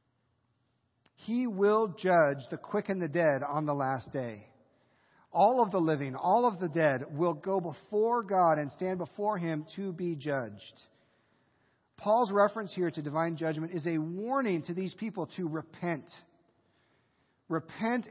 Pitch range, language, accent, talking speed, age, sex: 120-165 Hz, English, American, 150 wpm, 40-59, male